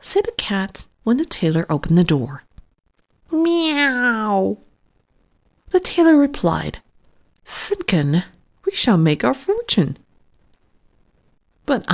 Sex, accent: female, American